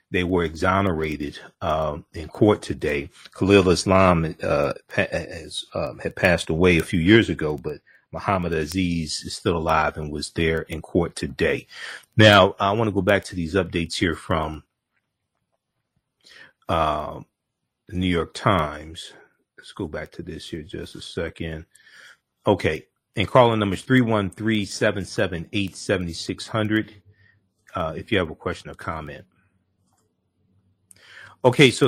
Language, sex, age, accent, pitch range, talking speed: English, male, 40-59, American, 85-110 Hz, 130 wpm